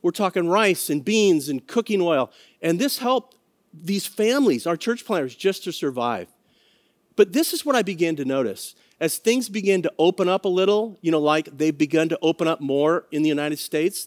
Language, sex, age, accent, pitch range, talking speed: English, male, 40-59, American, 155-220 Hz, 205 wpm